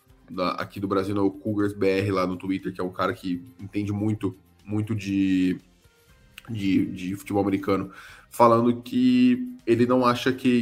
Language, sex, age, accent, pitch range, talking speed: Portuguese, male, 20-39, Brazilian, 100-120 Hz, 155 wpm